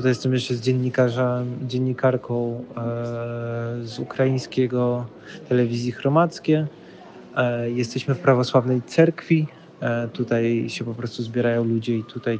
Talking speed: 120 wpm